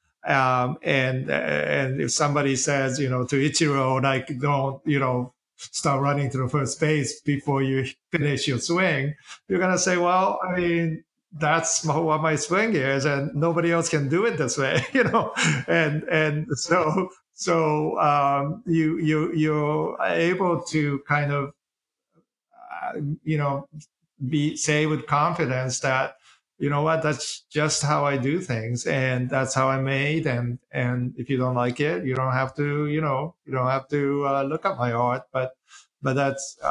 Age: 50-69